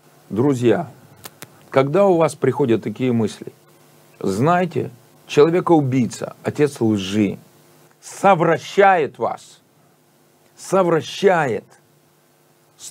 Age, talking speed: 50-69, 70 wpm